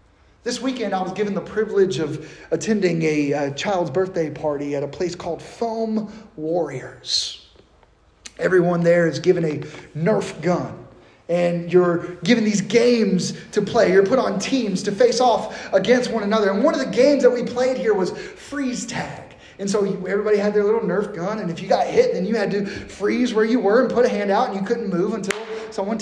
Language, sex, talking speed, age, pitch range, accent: English, male, 205 wpm, 30-49, 175-230 Hz, American